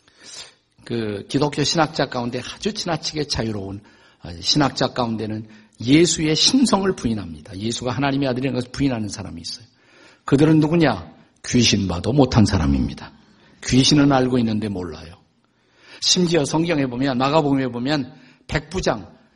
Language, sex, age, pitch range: Korean, male, 50-69, 120-170 Hz